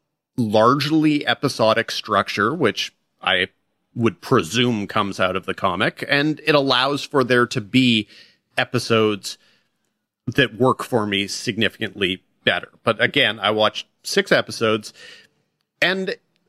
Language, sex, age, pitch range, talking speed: English, male, 30-49, 100-125 Hz, 120 wpm